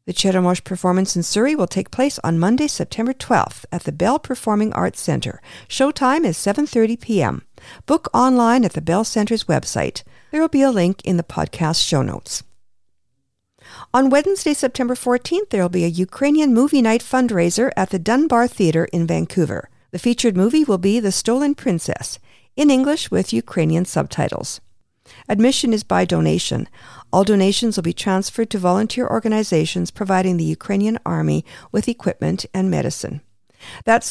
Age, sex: 50-69, female